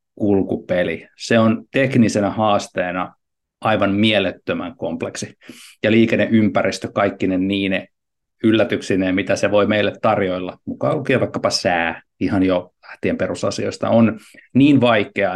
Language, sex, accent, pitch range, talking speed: Finnish, male, native, 95-115 Hz, 110 wpm